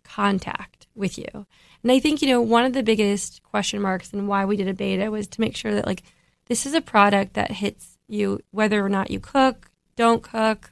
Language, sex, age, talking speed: English, female, 20-39, 225 wpm